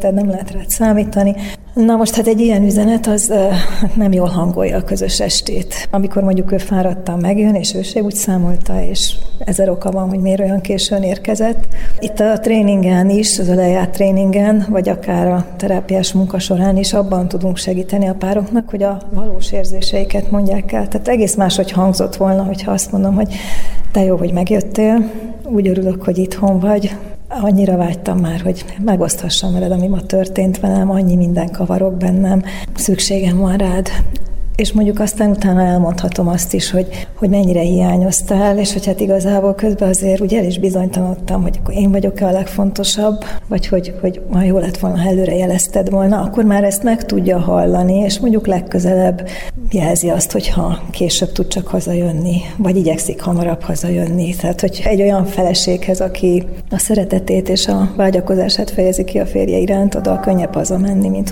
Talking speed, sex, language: 170 wpm, female, Hungarian